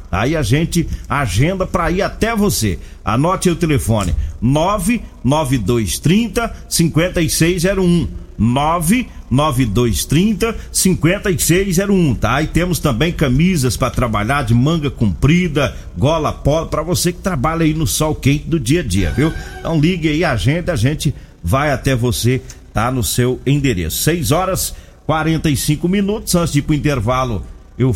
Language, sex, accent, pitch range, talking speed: Portuguese, male, Brazilian, 125-180 Hz, 135 wpm